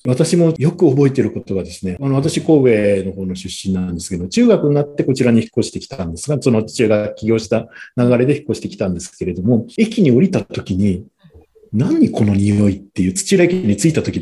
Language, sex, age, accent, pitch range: Japanese, male, 50-69, native, 100-170 Hz